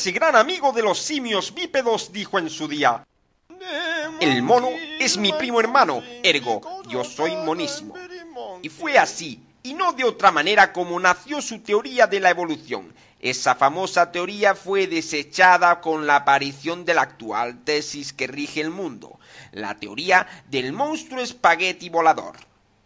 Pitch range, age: 155-240 Hz, 50-69